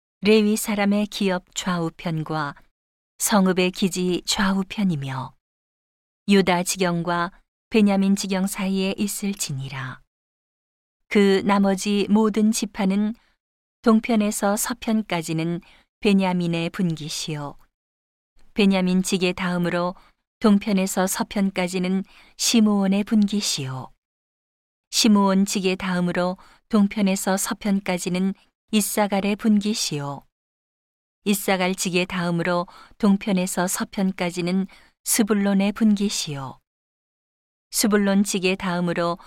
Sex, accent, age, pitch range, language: female, native, 40-59, 175-205 Hz, Korean